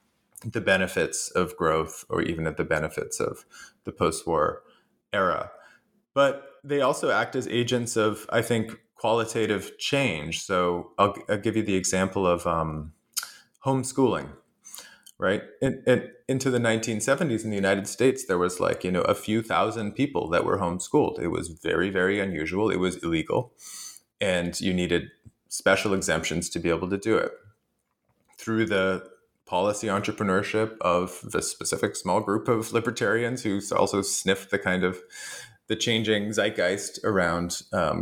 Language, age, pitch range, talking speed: English, 30-49, 90-115 Hz, 155 wpm